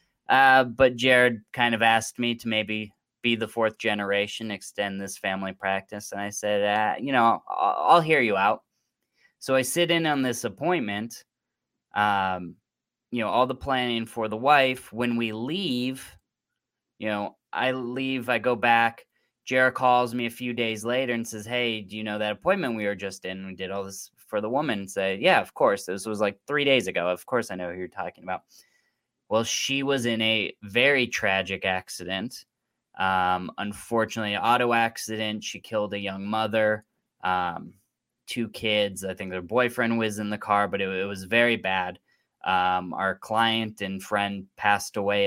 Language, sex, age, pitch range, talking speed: English, male, 10-29, 100-120 Hz, 185 wpm